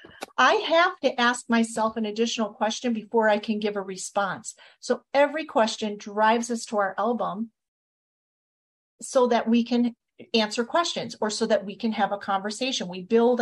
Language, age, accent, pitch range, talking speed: English, 40-59, American, 210-265 Hz, 170 wpm